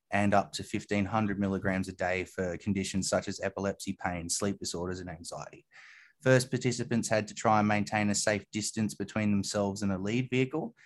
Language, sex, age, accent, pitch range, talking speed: English, male, 20-39, Australian, 100-115 Hz, 180 wpm